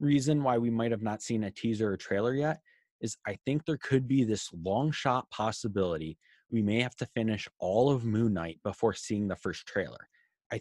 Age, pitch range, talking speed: 20-39, 100-120 Hz, 210 wpm